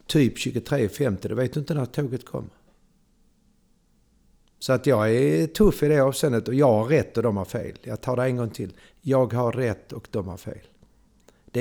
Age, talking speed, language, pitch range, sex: 60-79, 200 wpm, Swedish, 100-130 Hz, male